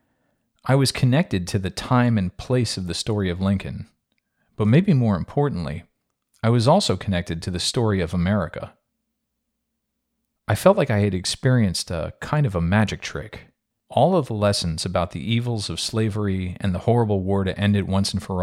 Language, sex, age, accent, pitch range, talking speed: English, male, 40-59, American, 90-125 Hz, 185 wpm